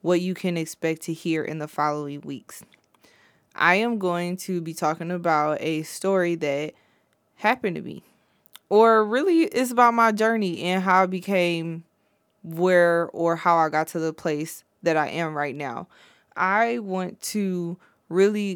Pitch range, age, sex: 160-195 Hz, 20-39, female